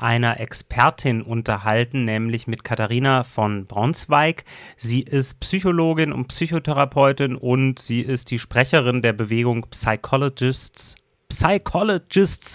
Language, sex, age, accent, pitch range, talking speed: German, male, 30-49, German, 115-140 Hz, 105 wpm